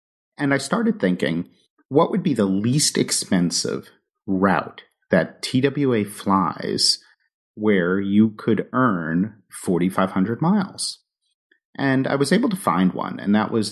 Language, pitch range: English, 90-125 Hz